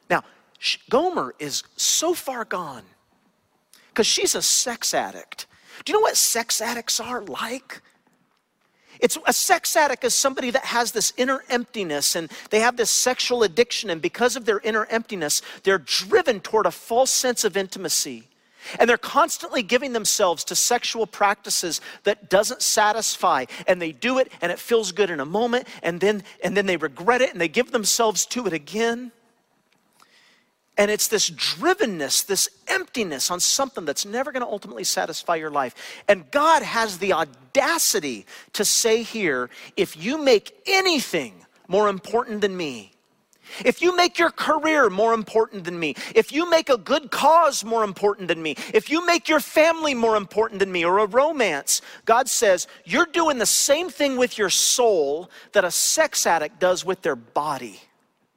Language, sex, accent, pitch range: English, male, American, 195-270 Hz